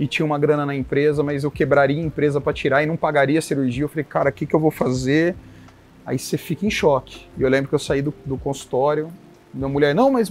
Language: Portuguese